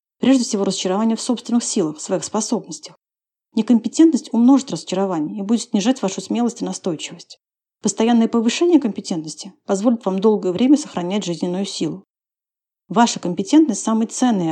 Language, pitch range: Russian, 175-245 Hz